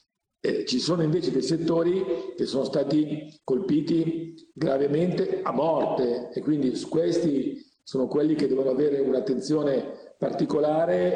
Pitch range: 135-165 Hz